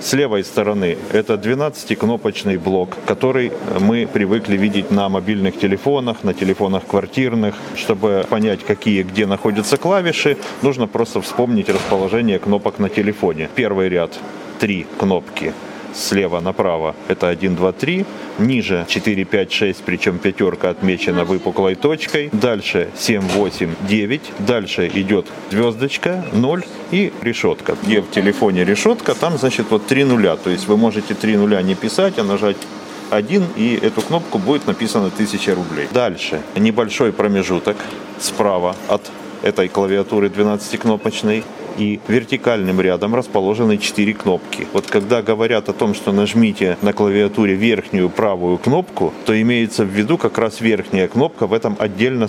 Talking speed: 140 wpm